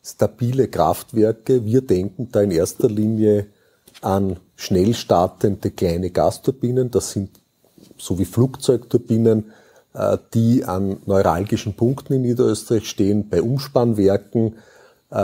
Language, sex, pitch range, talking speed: German, male, 100-125 Hz, 105 wpm